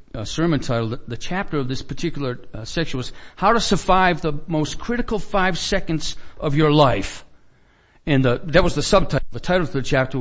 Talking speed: 200 wpm